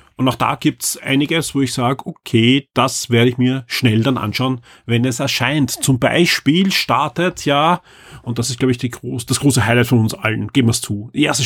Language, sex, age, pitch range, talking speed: German, male, 30-49, 120-140 Hz, 225 wpm